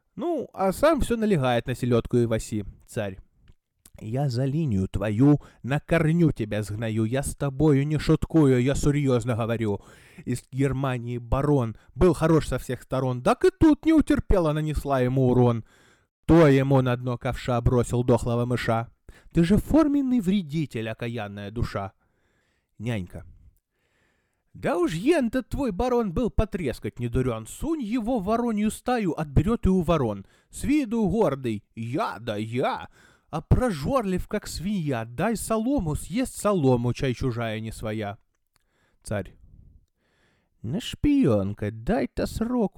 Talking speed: 135 wpm